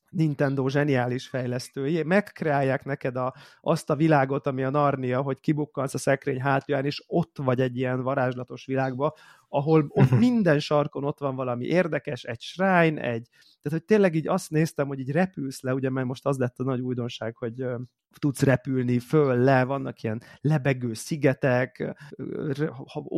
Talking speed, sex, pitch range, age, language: 165 wpm, male, 130-155 Hz, 30-49, Hungarian